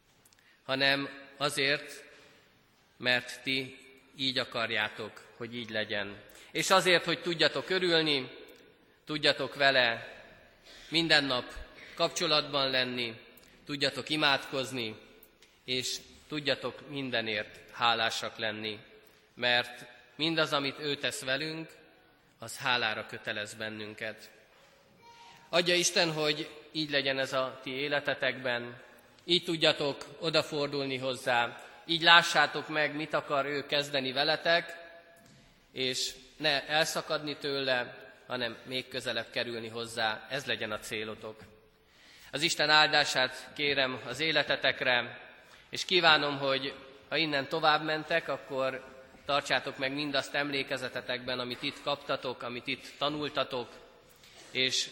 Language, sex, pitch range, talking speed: Hungarian, male, 125-150 Hz, 105 wpm